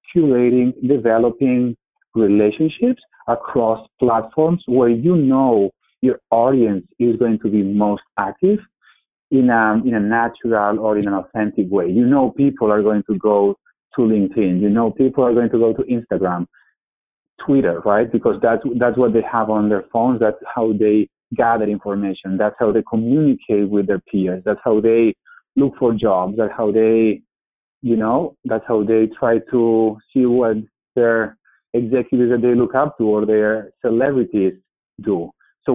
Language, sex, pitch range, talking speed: English, male, 105-125 Hz, 160 wpm